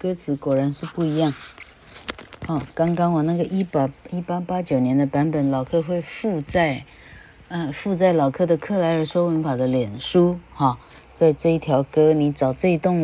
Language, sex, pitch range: Chinese, female, 135-170 Hz